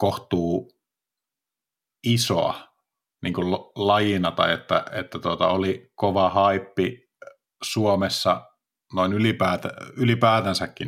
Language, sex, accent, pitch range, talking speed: Finnish, male, native, 90-100 Hz, 85 wpm